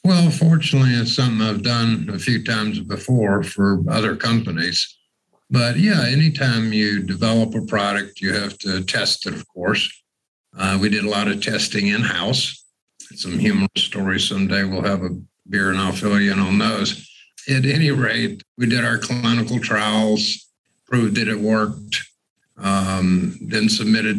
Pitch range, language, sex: 100-130 Hz, English, male